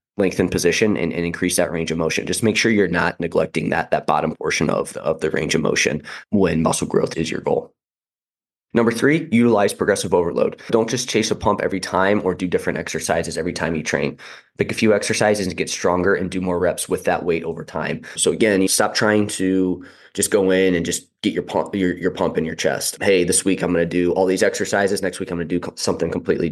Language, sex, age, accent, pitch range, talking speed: English, male, 20-39, American, 90-100 Hz, 240 wpm